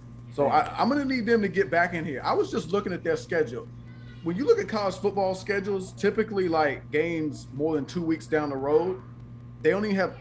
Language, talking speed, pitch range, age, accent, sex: English, 225 wpm, 120-170 Hz, 30-49, American, male